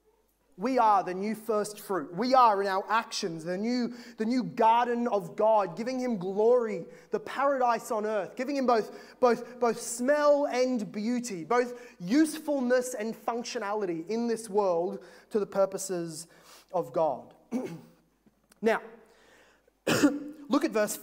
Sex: male